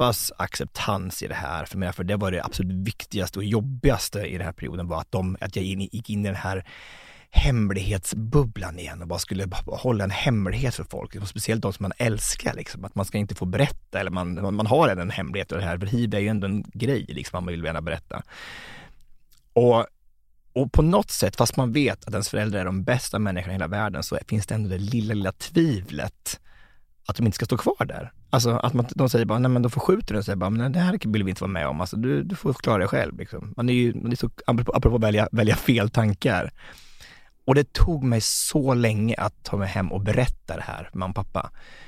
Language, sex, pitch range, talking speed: Swedish, male, 95-120 Hz, 230 wpm